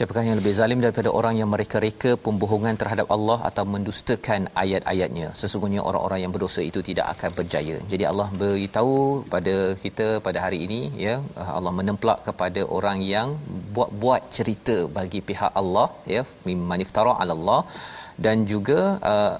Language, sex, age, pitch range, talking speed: Malayalam, male, 40-59, 95-115 Hz, 150 wpm